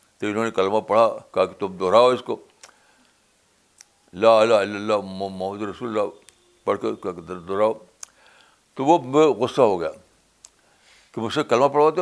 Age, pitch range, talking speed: 60-79, 105-150 Hz, 145 wpm